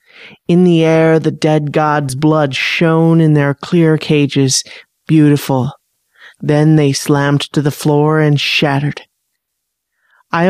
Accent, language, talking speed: American, English, 125 wpm